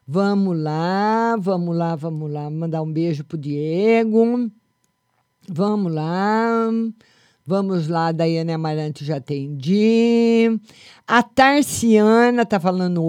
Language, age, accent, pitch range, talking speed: Portuguese, 50-69, Brazilian, 160-225 Hz, 120 wpm